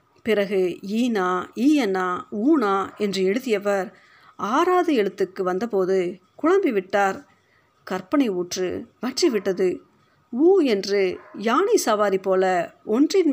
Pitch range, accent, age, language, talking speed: 190-265 Hz, native, 50-69, Tamil, 85 wpm